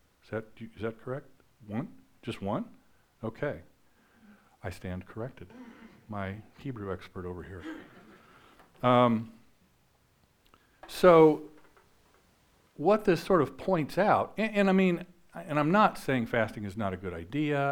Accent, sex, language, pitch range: American, male, English, 100-135 Hz